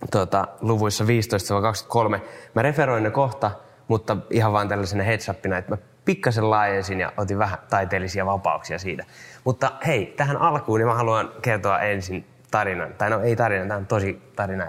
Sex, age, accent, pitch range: male, 20-39, native, 100-125 Hz